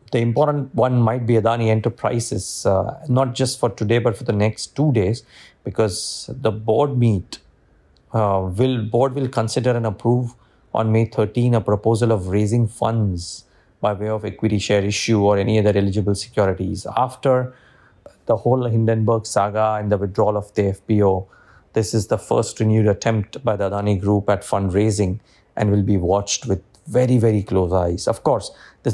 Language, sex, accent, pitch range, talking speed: English, male, Indian, 100-120 Hz, 170 wpm